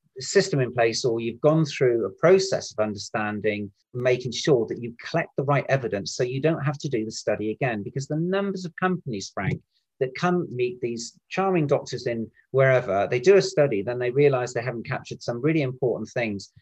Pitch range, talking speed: 115-150 Hz, 200 wpm